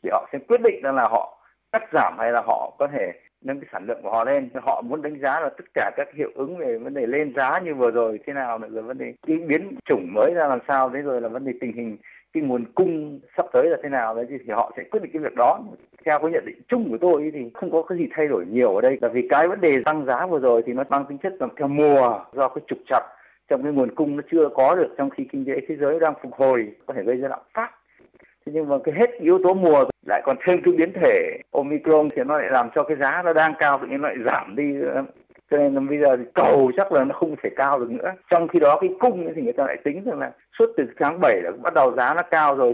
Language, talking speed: Vietnamese, 290 wpm